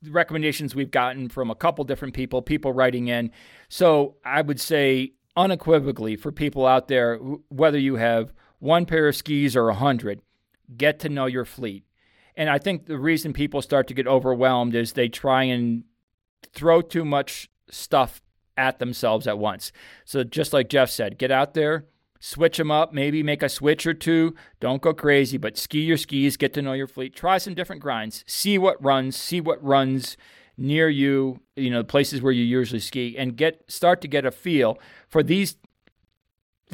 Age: 40-59